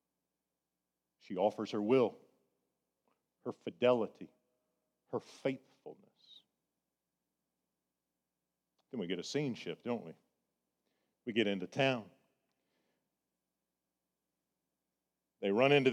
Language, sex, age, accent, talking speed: English, male, 50-69, American, 85 wpm